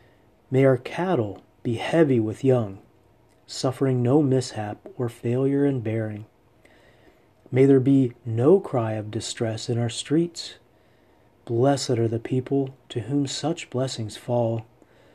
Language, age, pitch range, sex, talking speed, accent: English, 40-59, 115-130 Hz, male, 130 wpm, American